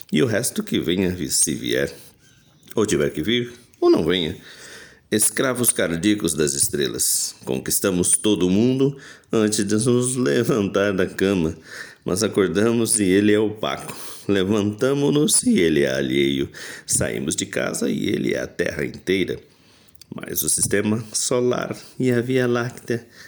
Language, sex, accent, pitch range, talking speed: Portuguese, male, Brazilian, 75-115 Hz, 140 wpm